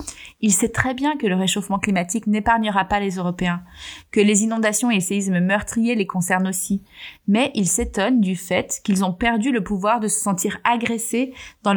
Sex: female